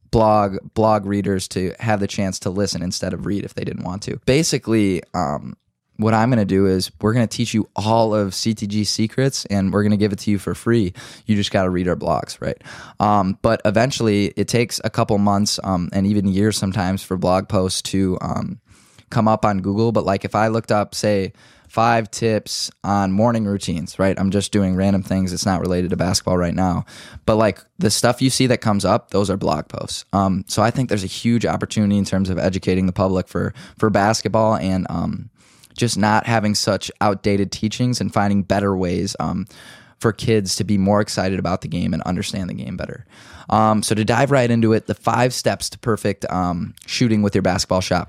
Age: 10-29